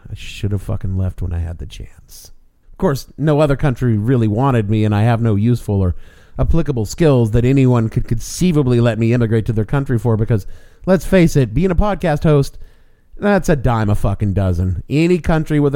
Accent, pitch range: American, 110-165 Hz